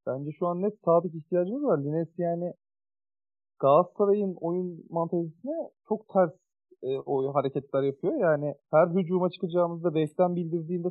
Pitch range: 145-185 Hz